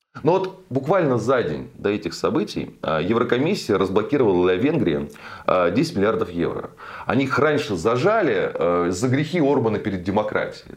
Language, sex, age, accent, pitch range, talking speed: Russian, male, 30-49, native, 95-140 Hz, 135 wpm